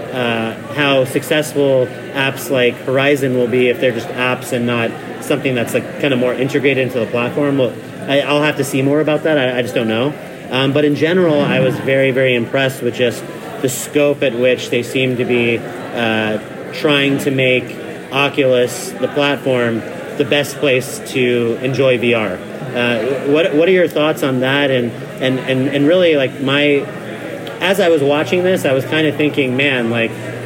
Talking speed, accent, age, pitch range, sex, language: 190 wpm, American, 30-49, 120-145 Hz, male, English